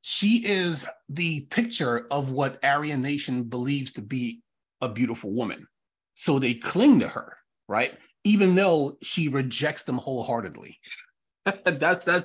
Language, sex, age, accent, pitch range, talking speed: English, male, 30-49, American, 120-150 Hz, 135 wpm